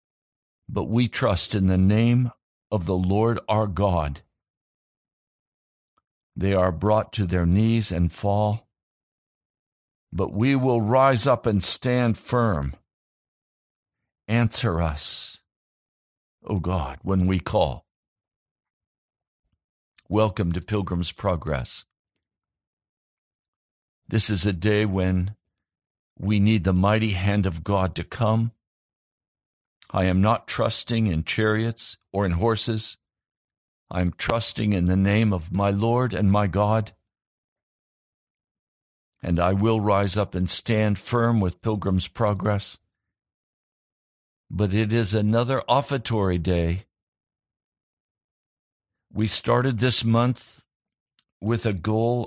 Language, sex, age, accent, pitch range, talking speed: English, male, 60-79, American, 90-110 Hz, 110 wpm